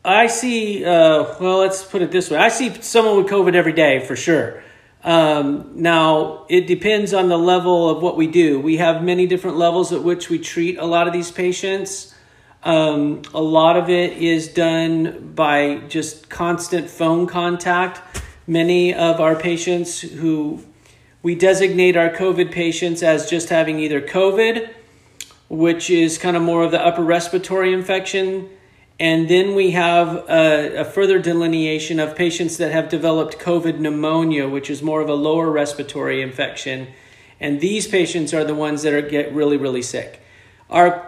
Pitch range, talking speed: 155-175 Hz, 170 wpm